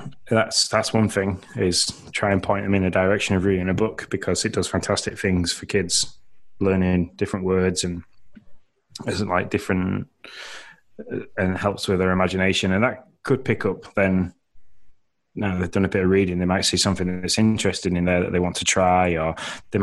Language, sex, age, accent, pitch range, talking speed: English, male, 20-39, British, 90-105 Hz, 190 wpm